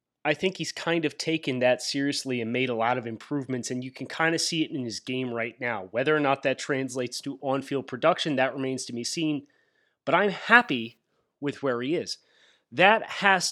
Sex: male